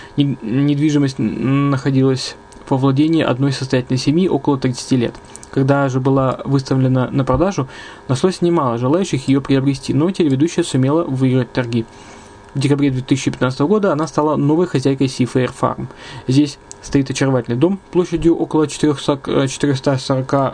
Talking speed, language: 125 wpm, Russian